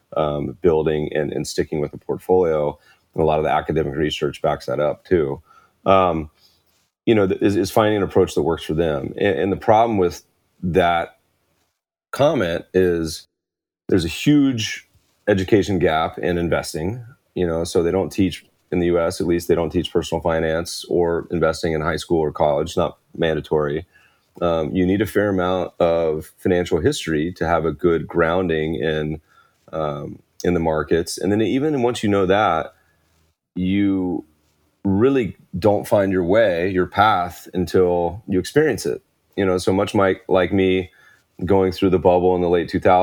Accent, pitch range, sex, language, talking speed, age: American, 80-95 Hz, male, English, 175 wpm, 30-49